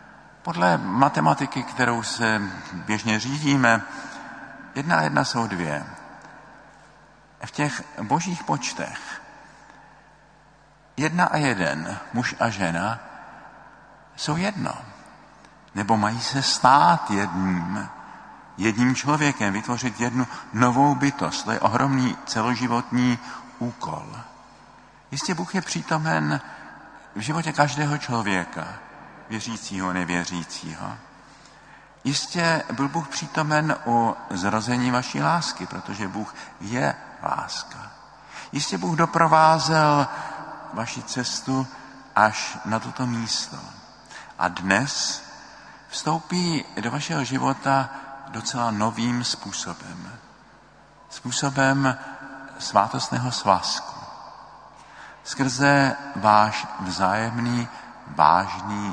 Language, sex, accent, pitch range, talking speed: Czech, male, native, 110-140 Hz, 90 wpm